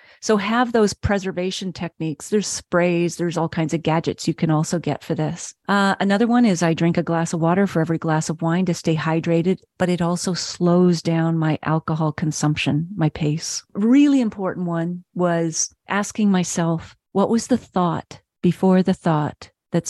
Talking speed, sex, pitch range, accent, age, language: 180 wpm, female, 165-205 Hz, American, 40-59, English